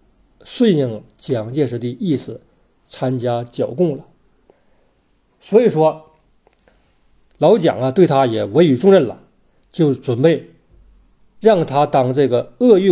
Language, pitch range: Chinese, 125-185 Hz